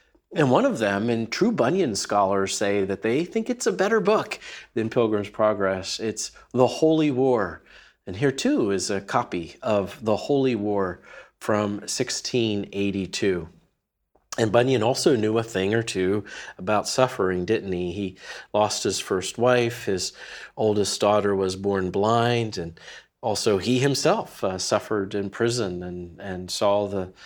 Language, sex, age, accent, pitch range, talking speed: English, male, 40-59, American, 95-120 Hz, 155 wpm